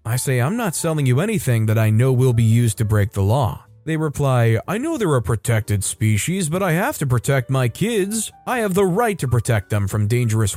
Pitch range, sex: 115-170 Hz, male